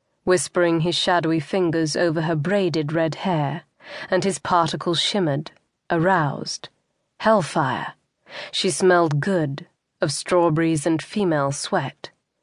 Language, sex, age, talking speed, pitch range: English, female, 30-49, 110 wpm, 160-185 Hz